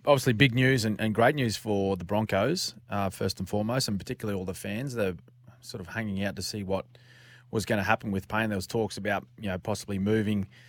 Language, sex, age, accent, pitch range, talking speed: English, male, 30-49, Australian, 100-125 Hz, 230 wpm